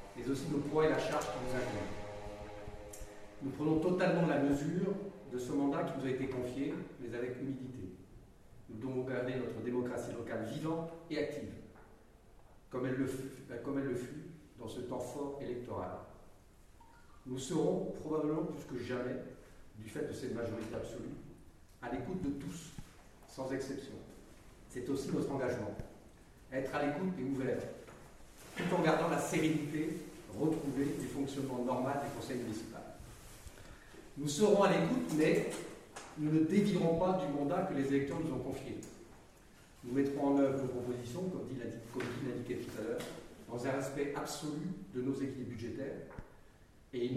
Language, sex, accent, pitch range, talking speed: French, male, French, 120-150 Hz, 160 wpm